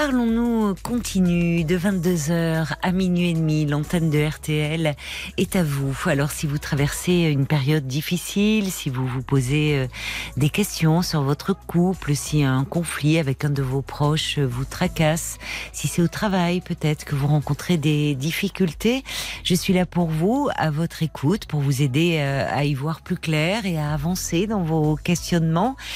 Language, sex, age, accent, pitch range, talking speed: French, female, 40-59, French, 145-185 Hz, 165 wpm